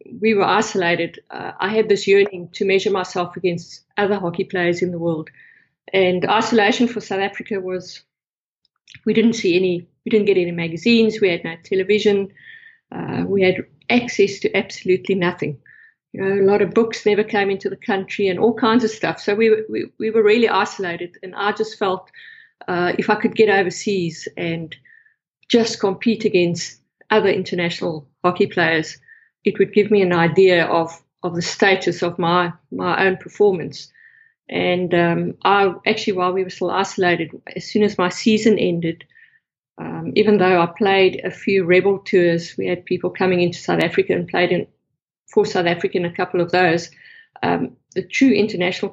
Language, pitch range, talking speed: English, 175-210 Hz, 175 wpm